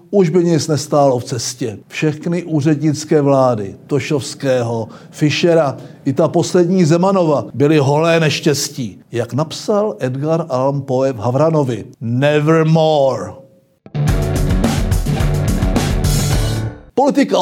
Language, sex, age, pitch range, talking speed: Czech, male, 60-79, 145-175 Hz, 95 wpm